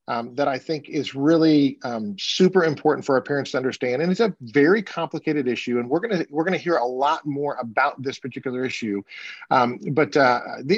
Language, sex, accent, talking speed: English, male, American, 205 wpm